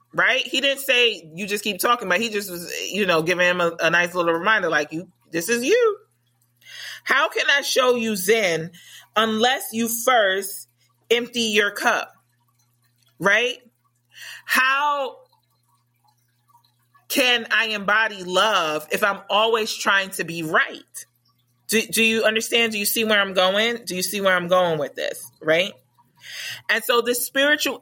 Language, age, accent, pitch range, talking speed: English, 30-49, American, 155-235 Hz, 160 wpm